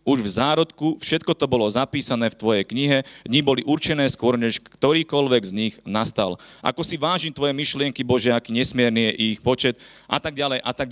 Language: Slovak